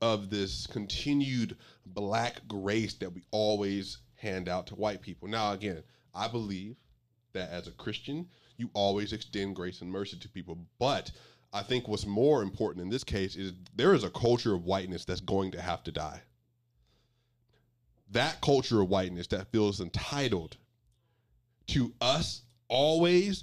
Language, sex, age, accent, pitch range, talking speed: English, male, 30-49, American, 100-120 Hz, 155 wpm